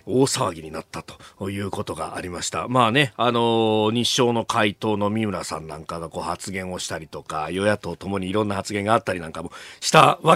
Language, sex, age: Japanese, male, 40-59